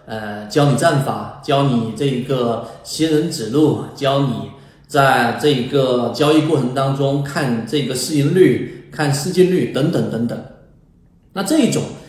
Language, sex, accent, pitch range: Chinese, male, native, 120-195 Hz